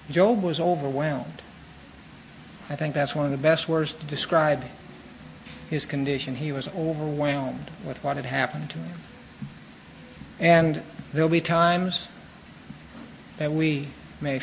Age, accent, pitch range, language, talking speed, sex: 60-79, American, 140-160 Hz, English, 130 wpm, male